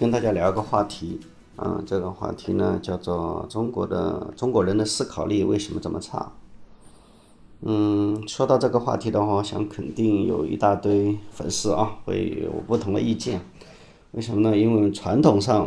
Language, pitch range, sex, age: Chinese, 95-110 Hz, male, 30-49